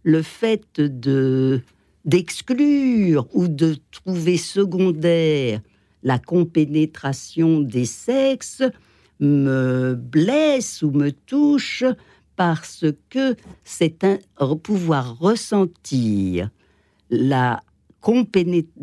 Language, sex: French, female